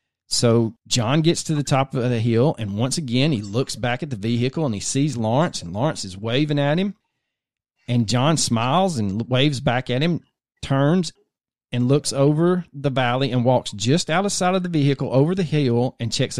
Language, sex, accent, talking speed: English, male, American, 205 wpm